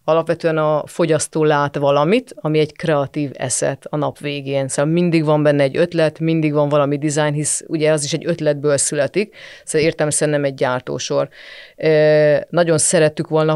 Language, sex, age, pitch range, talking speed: Hungarian, female, 30-49, 140-160 Hz, 160 wpm